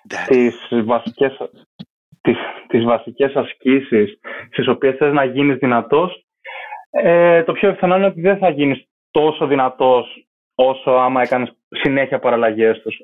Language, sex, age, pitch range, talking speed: Greek, male, 20-39, 130-150 Hz, 135 wpm